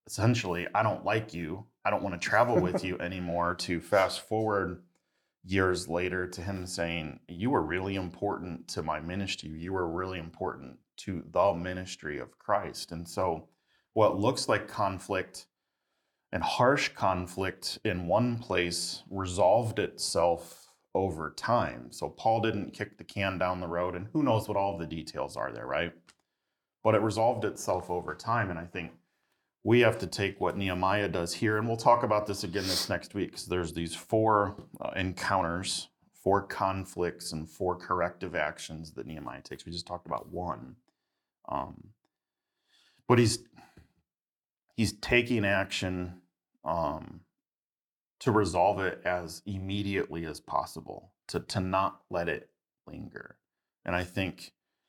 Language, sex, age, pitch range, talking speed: English, male, 30-49, 85-100 Hz, 155 wpm